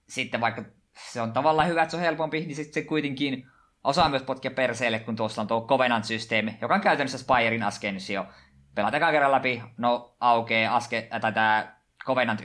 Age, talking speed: 20-39, 175 wpm